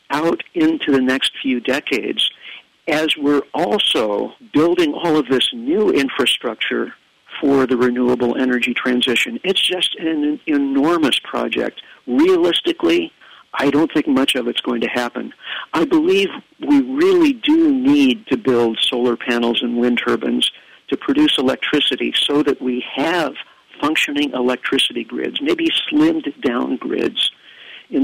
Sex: male